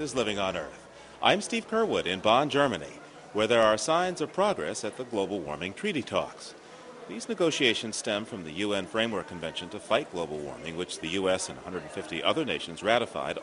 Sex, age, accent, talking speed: male, 40-59, American, 190 wpm